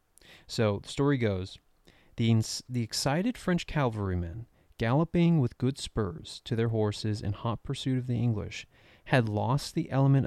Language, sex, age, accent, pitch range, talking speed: English, male, 30-49, American, 105-130 Hz, 150 wpm